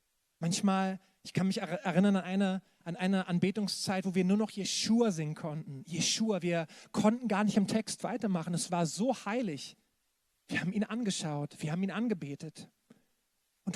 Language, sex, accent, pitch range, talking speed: German, male, German, 170-205 Hz, 165 wpm